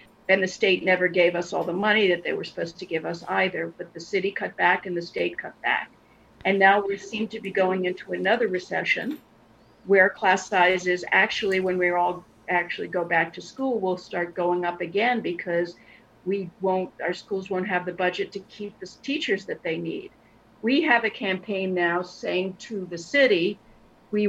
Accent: American